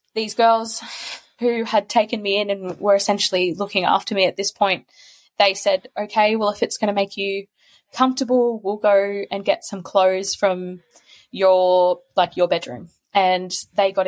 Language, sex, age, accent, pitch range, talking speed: English, female, 20-39, Australian, 180-210 Hz, 175 wpm